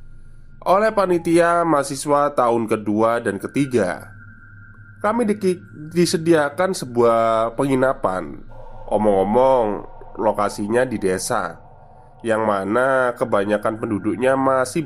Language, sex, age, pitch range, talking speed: Indonesian, male, 20-39, 110-170 Hz, 90 wpm